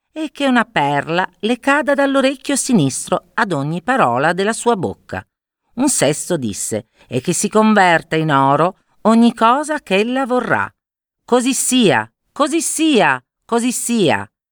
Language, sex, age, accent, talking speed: Italian, female, 40-59, native, 140 wpm